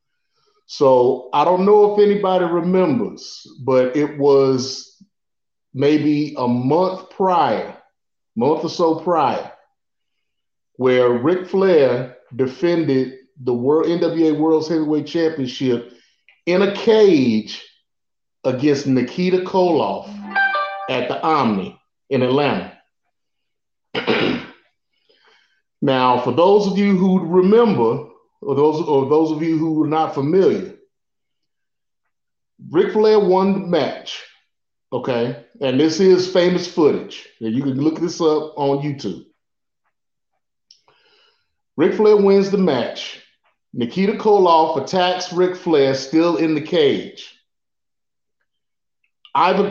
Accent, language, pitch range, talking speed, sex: American, English, 135-195 Hz, 105 wpm, male